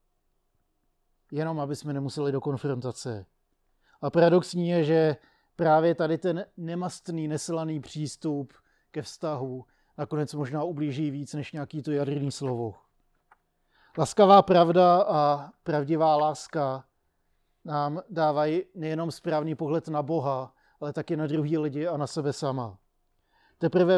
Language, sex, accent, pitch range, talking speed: Czech, male, native, 145-165 Hz, 125 wpm